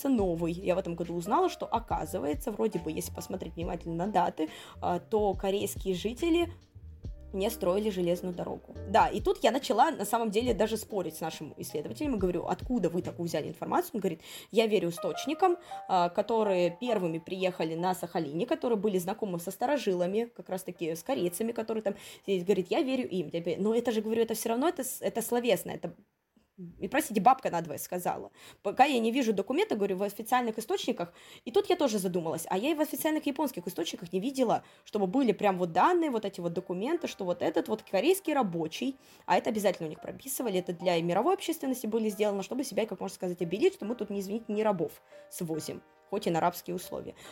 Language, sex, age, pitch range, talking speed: Russian, female, 20-39, 175-235 Hz, 200 wpm